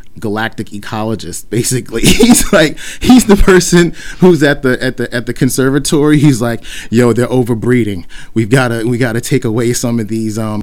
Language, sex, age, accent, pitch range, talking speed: English, male, 30-49, American, 110-145 Hz, 175 wpm